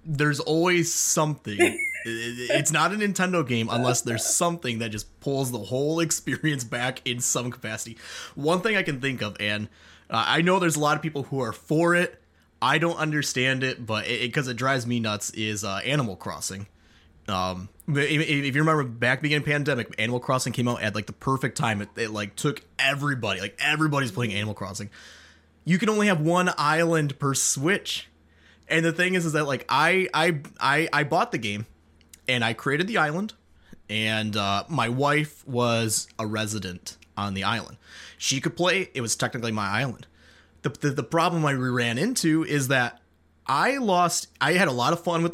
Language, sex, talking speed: English, male, 190 wpm